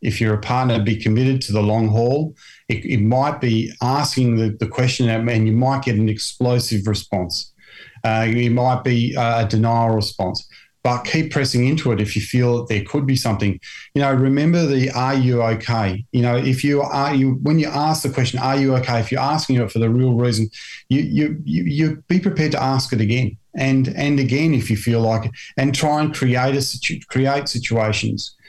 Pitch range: 110-135 Hz